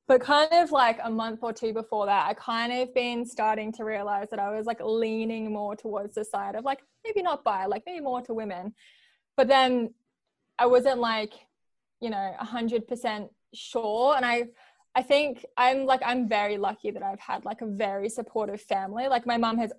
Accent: Australian